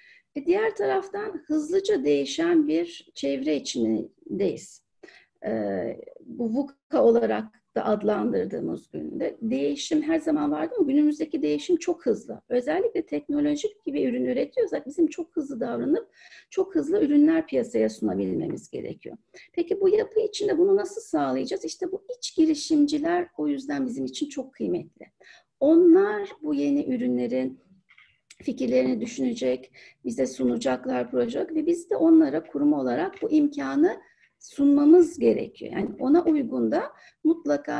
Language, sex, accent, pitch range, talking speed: Turkish, female, native, 220-345 Hz, 125 wpm